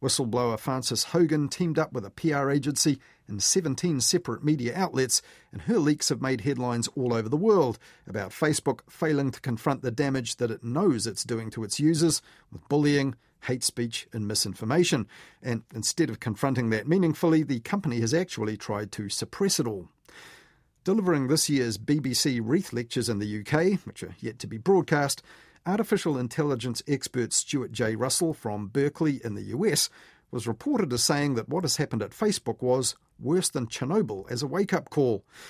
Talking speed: 175 wpm